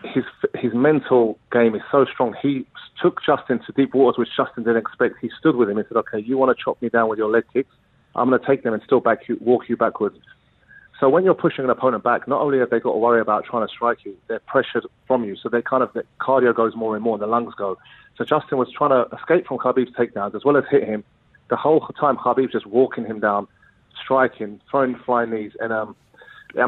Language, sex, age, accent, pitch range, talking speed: English, male, 30-49, British, 110-130 Hz, 250 wpm